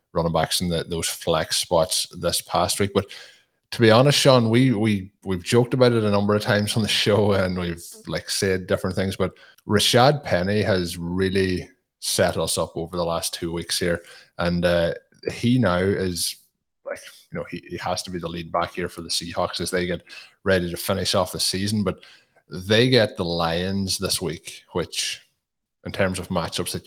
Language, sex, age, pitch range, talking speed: English, male, 20-39, 85-100 Hz, 200 wpm